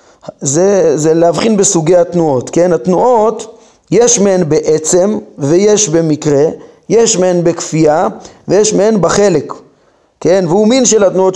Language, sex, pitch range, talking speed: Hebrew, male, 155-210 Hz, 120 wpm